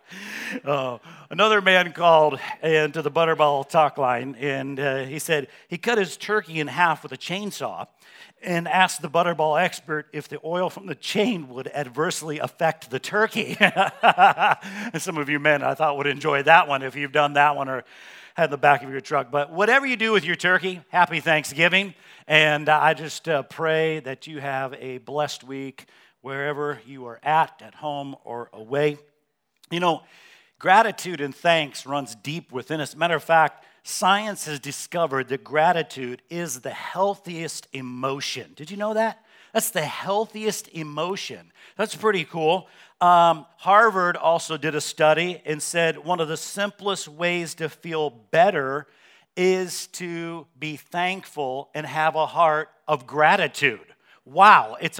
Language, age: English, 50-69